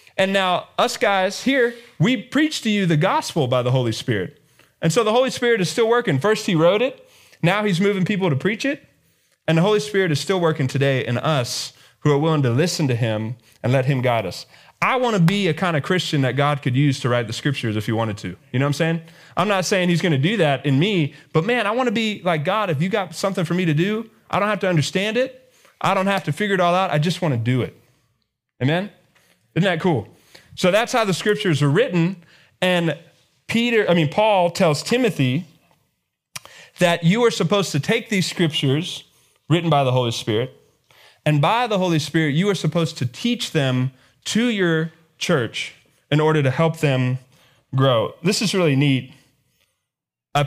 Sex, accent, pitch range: male, American, 135-195 Hz